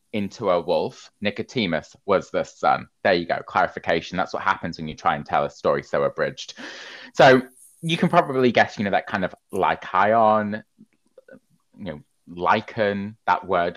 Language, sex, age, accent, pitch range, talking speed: English, male, 20-39, British, 85-130 Hz, 170 wpm